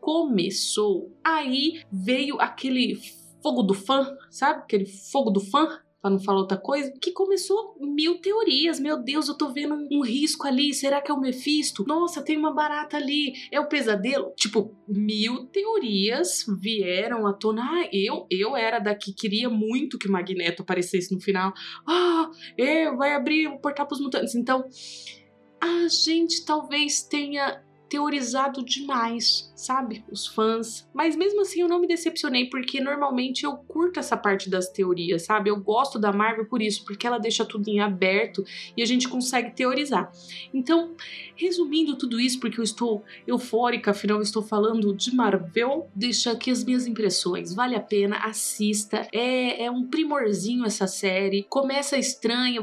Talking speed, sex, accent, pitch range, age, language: 165 wpm, female, Brazilian, 205-290 Hz, 20-39, Portuguese